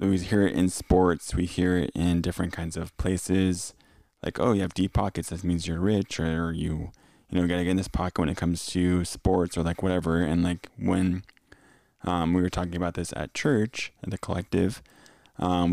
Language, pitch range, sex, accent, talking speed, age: English, 85-95 Hz, male, American, 220 wpm, 20-39